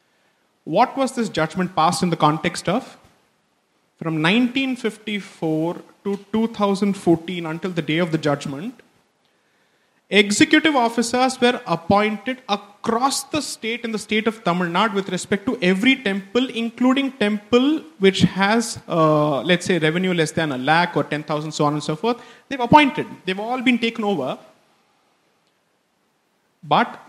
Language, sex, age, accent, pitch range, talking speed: English, male, 30-49, Indian, 170-225 Hz, 140 wpm